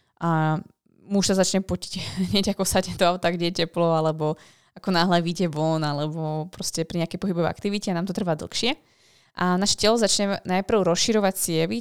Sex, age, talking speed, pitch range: female, 20-39, 175 wpm, 170-195 Hz